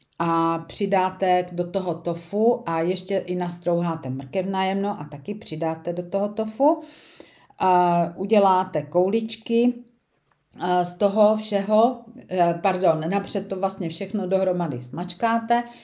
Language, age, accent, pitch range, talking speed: Czech, 50-69, native, 165-205 Hz, 115 wpm